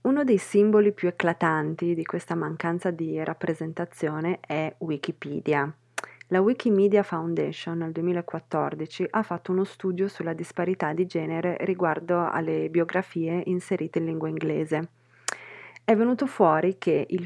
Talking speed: 130 wpm